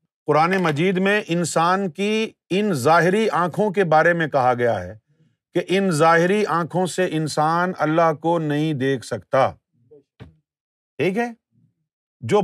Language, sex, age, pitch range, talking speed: Urdu, male, 50-69, 155-260 Hz, 135 wpm